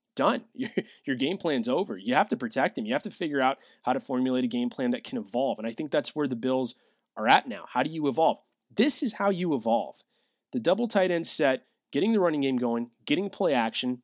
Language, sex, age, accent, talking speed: English, male, 20-39, American, 245 wpm